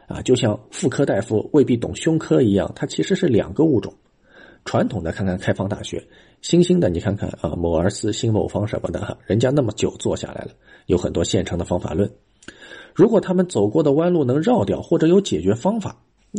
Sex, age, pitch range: male, 50-69, 95-120 Hz